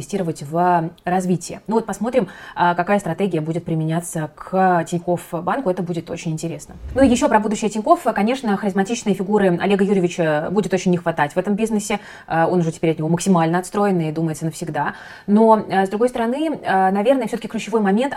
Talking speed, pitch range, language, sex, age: 170 wpm, 170-205 Hz, Russian, female, 20-39